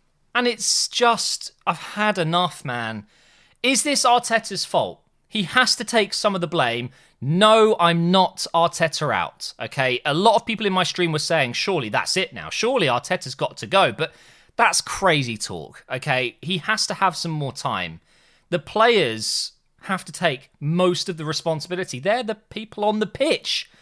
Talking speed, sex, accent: 175 wpm, male, British